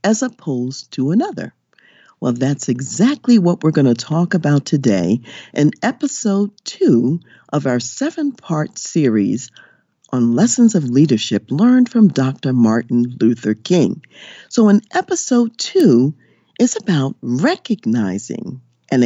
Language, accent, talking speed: English, American, 125 wpm